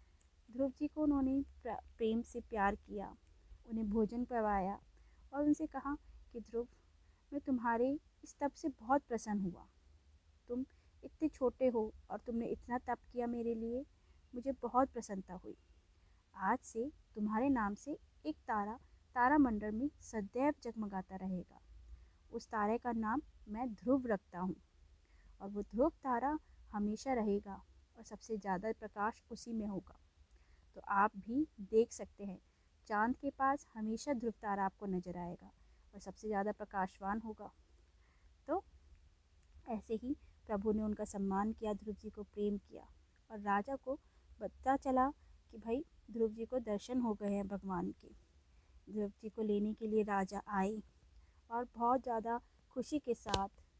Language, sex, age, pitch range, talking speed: Hindi, female, 20-39, 195-245 Hz, 150 wpm